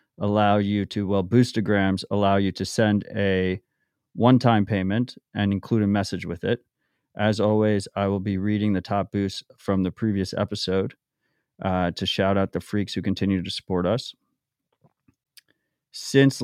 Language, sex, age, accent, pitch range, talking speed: English, male, 30-49, American, 100-110 Hz, 155 wpm